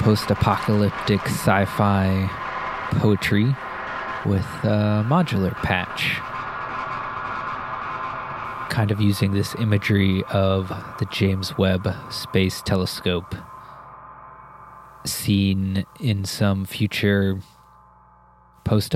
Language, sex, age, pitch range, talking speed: English, male, 20-39, 85-105 Hz, 80 wpm